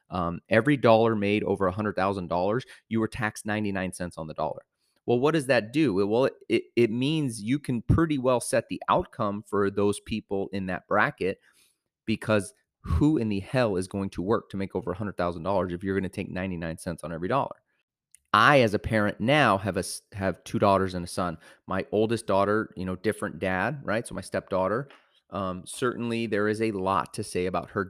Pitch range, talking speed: 95-110 Hz, 215 wpm